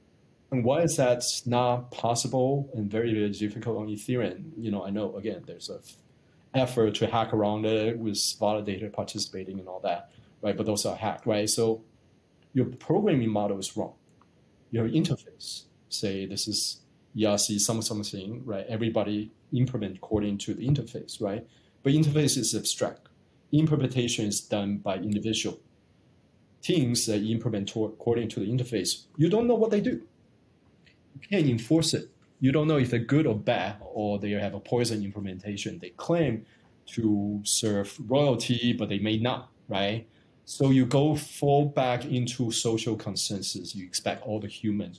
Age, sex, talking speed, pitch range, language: 30-49, male, 160 wpm, 105-130 Hz, English